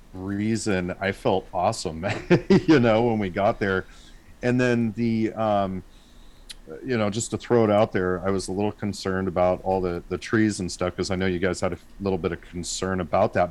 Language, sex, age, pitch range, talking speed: English, male, 40-59, 90-115 Hz, 210 wpm